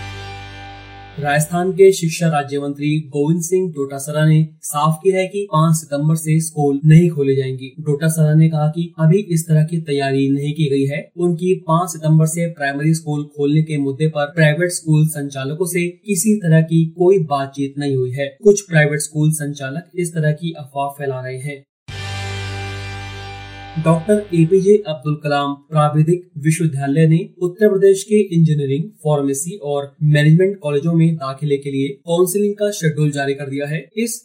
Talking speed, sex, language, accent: 165 wpm, male, Hindi, native